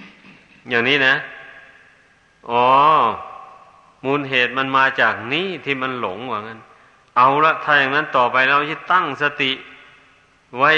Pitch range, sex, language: 130-150 Hz, male, Thai